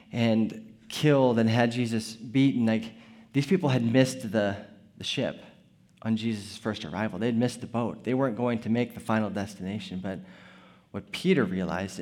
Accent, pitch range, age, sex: American, 115-140 Hz, 20-39, male